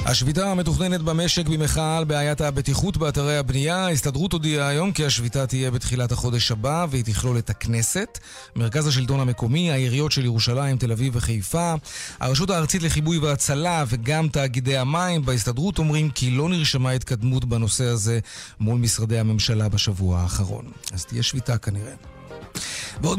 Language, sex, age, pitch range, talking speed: Hebrew, male, 40-59, 125-170 Hz, 145 wpm